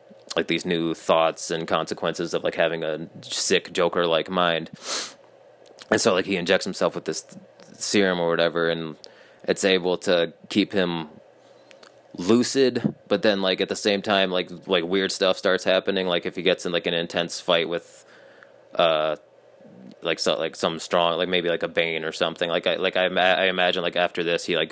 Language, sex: English, male